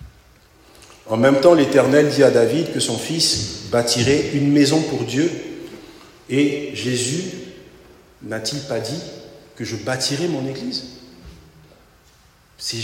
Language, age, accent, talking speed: English, 50-69, French, 120 wpm